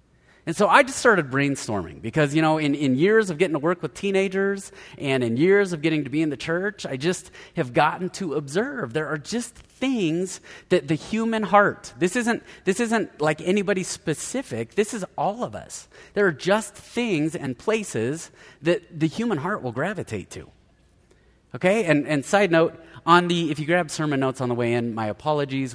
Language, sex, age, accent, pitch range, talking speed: English, male, 30-49, American, 120-185 Hz, 200 wpm